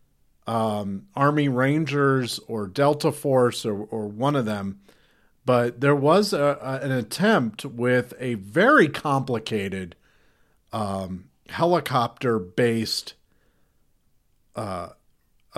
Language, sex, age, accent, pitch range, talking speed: English, male, 50-69, American, 110-140 Hz, 90 wpm